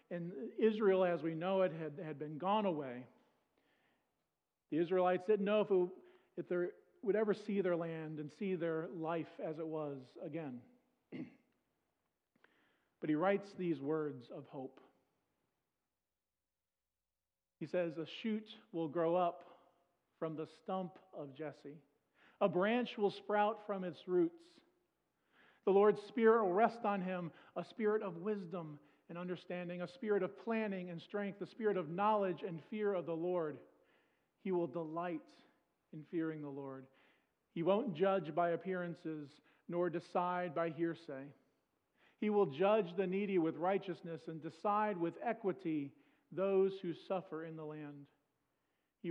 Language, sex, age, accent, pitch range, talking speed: English, male, 40-59, American, 160-195 Hz, 145 wpm